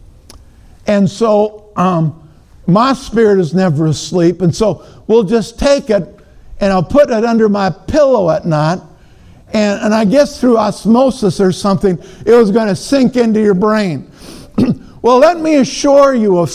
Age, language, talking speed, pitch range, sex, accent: 50-69, English, 165 wpm, 190-265 Hz, male, American